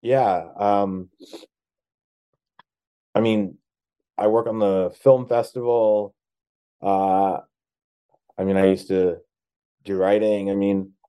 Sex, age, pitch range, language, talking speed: male, 20-39, 95-105 Hz, English, 110 wpm